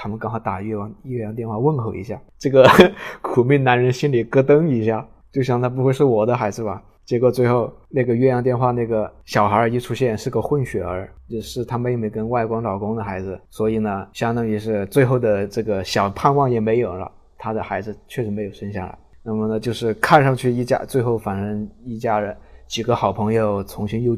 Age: 20-39